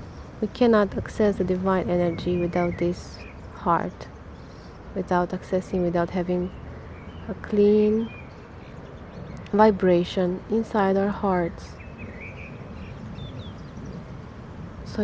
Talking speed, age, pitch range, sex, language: 80 wpm, 20-39, 170-210 Hz, female, Romanian